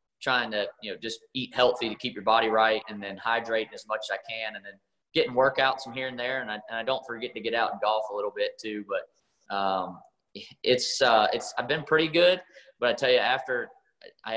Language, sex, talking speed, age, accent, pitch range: English, male, 240 wpm, 20-39, American, 105-125 Hz